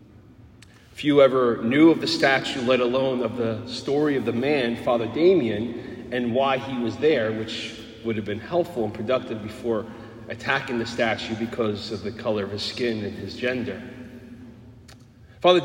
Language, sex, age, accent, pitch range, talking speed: English, male, 30-49, American, 110-130 Hz, 165 wpm